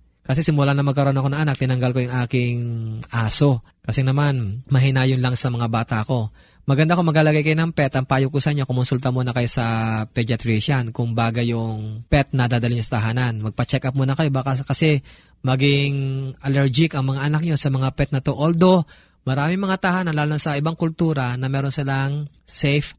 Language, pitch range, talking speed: Filipino, 125-155 Hz, 195 wpm